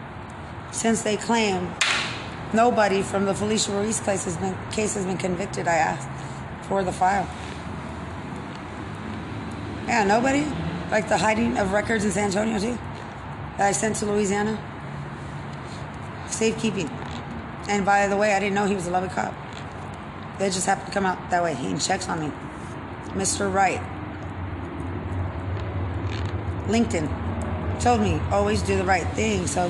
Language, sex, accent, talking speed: English, female, American, 145 wpm